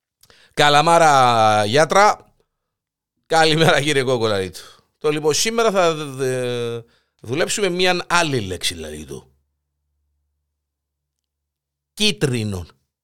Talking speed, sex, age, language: 70 wpm, male, 50-69, Greek